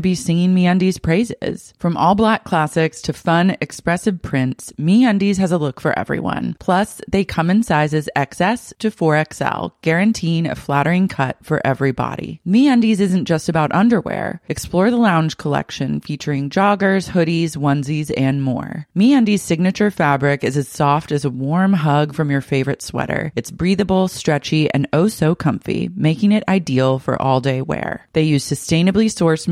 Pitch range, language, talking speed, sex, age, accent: 145-195 Hz, English, 165 wpm, female, 30-49, American